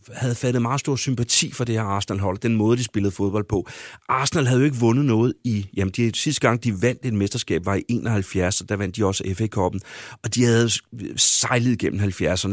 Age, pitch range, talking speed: 30-49, 100-130 Hz, 220 wpm